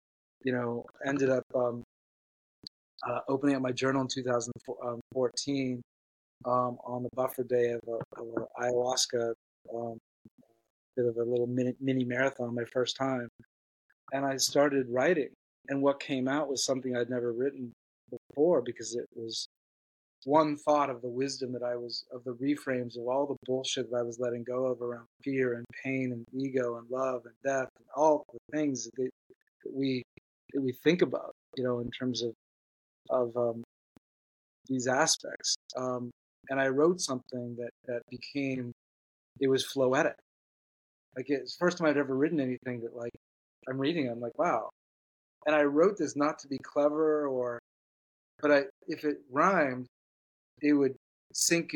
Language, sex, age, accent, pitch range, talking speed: English, male, 30-49, American, 120-135 Hz, 165 wpm